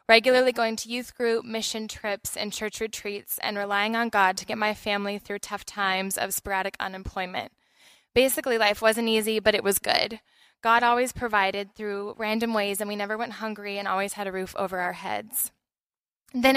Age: 10-29